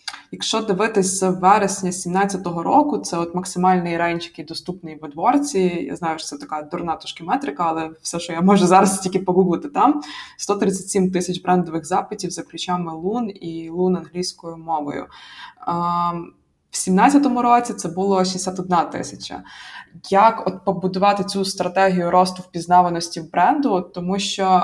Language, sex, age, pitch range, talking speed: Ukrainian, female, 20-39, 170-195 Hz, 145 wpm